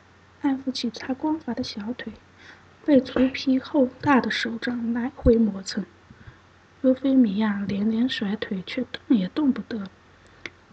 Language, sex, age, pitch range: Chinese, female, 20-39, 210-265 Hz